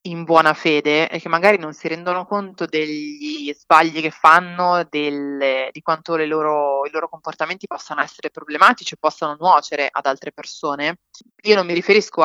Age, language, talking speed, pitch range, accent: 30-49, Italian, 155 wpm, 155-195 Hz, native